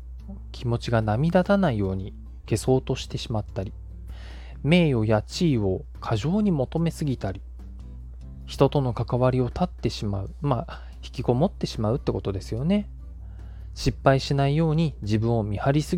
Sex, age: male, 20-39